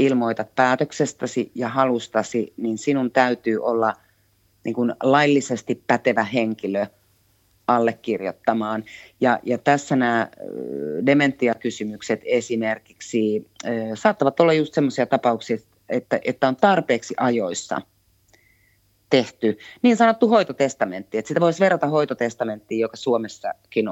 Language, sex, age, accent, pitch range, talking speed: Finnish, female, 30-49, native, 115-145 Hz, 105 wpm